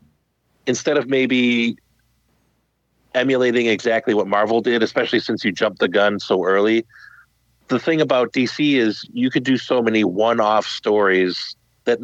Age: 30-49